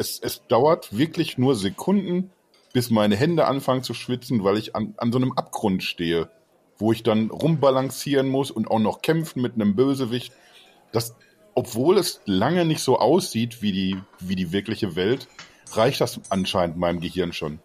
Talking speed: 175 wpm